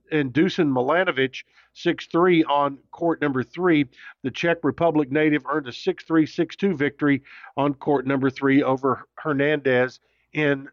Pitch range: 140-165 Hz